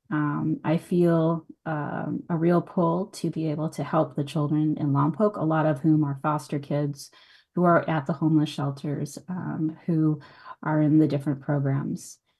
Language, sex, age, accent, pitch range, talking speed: English, female, 20-39, American, 150-180 Hz, 175 wpm